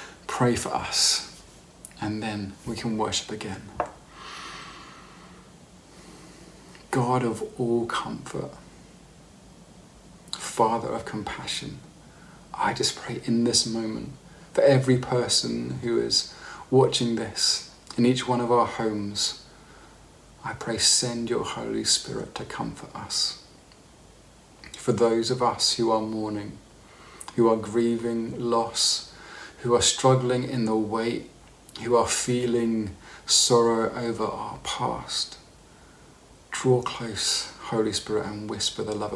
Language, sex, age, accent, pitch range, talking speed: English, male, 40-59, British, 110-120 Hz, 115 wpm